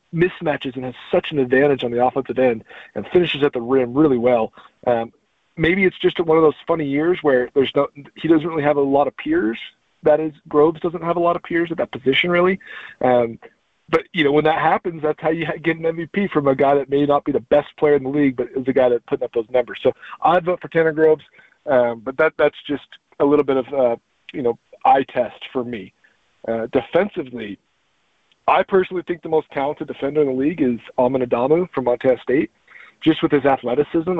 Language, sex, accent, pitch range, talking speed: English, male, American, 135-165 Hz, 230 wpm